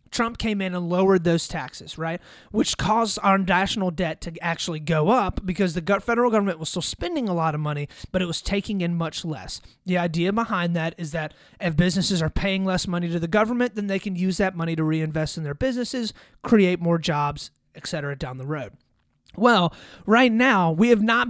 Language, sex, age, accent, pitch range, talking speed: English, male, 30-49, American, 165-220 Hz, 210 wpm